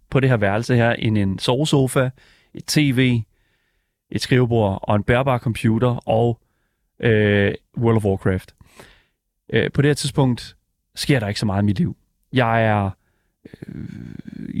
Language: Danish